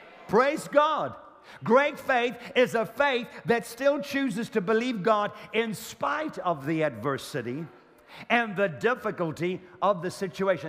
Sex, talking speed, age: male, 135 wpm, 50-69